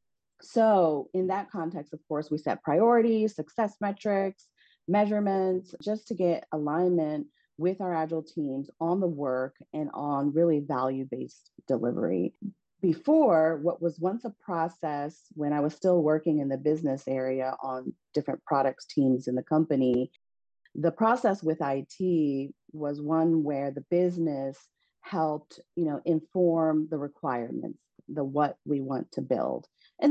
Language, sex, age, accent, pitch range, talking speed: English, female, 40-59, American, 145-180 Hz, 145 wpm